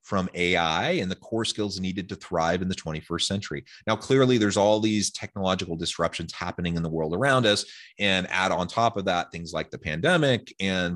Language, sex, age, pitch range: English, male, 30-49, 90-110 Hz